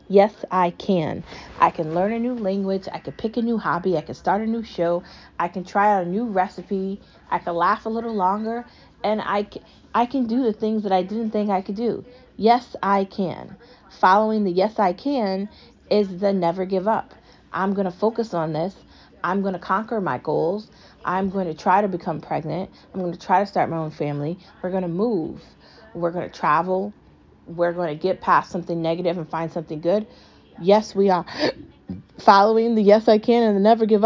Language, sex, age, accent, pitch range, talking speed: English, female, 30-49, American, 175-215 Hz, 210 wpm